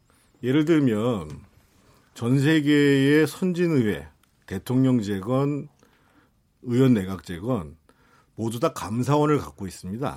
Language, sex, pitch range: Korean, male, 110-145 Hz